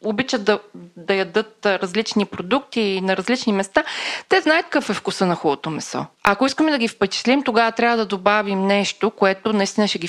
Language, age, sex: Bulgarian, 20-39, female